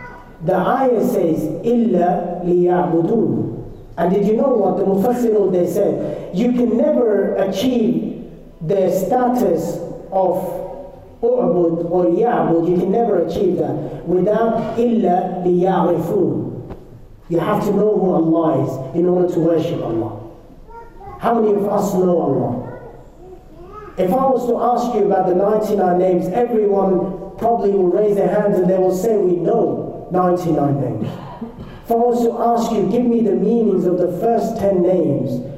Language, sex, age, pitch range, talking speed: English, male, 40-59, 165-205 Hz, 150 wpm